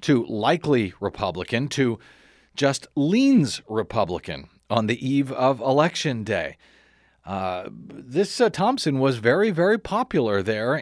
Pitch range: 120-175 Hz